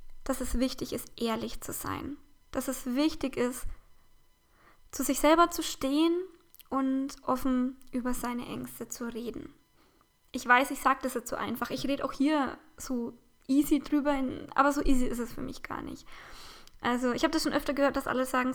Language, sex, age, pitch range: German, female, 10-29, 250-290 Hz